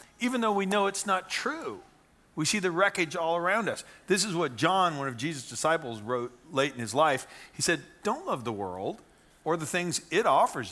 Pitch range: 120-165 Hz